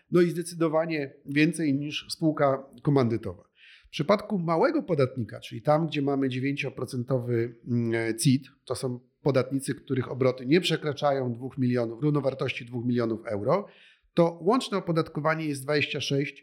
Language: Polish